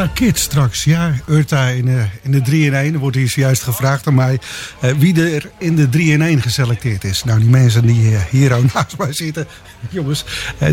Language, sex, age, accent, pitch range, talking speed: English, male, 50-69, Dutch, 120-155 Hz, 190 wpm